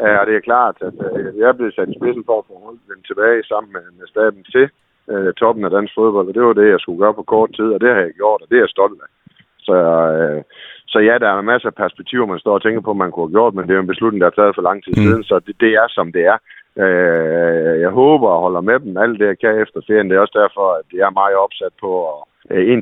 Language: Danish